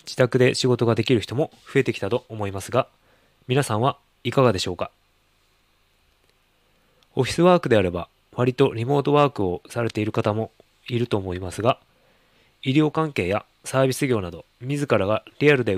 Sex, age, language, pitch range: male, 20-39, Japanese, 95-135 Hz